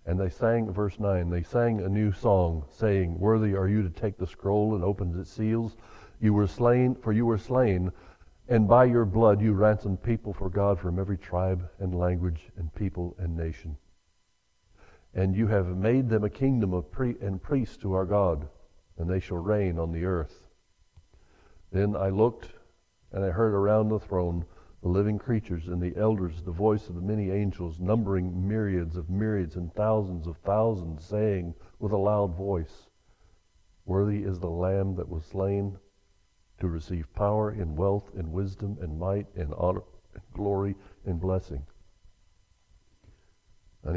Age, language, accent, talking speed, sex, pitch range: 60-79, English, American, 170 wpm, male, 90-105 Hz